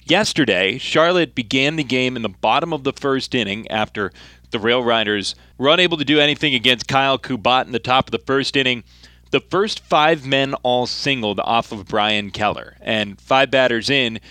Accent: American